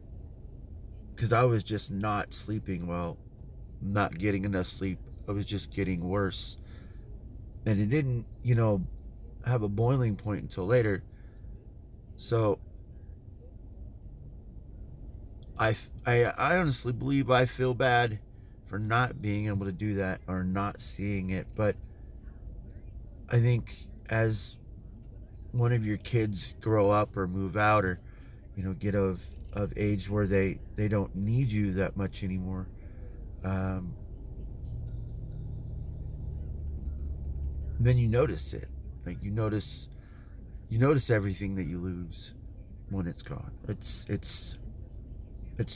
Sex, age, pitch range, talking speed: male, 30-49, 95-115 Hz, 125 wpm